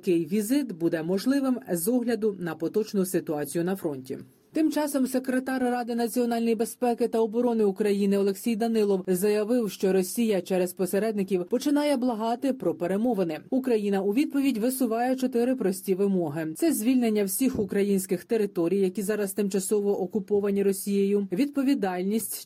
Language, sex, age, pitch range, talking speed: Ukrainian, female, 30-49, 190-235 Hz, 130 wpm